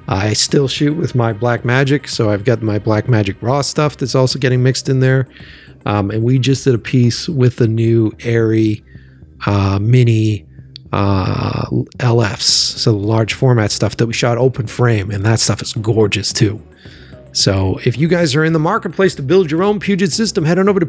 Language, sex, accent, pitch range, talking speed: English, male, American, 115-160 Hz, 200 wpm